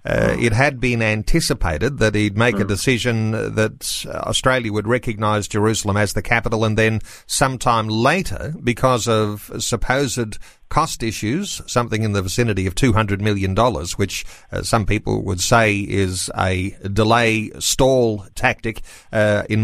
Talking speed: 145 wpm